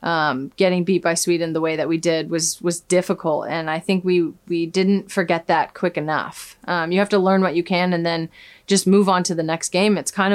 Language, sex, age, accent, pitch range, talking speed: English, female, 30-49, American, 165-190 Hz, 245 wpm